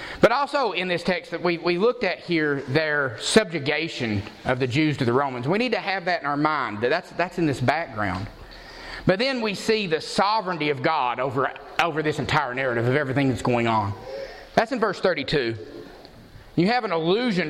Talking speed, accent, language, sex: 200 wpm, American, English, male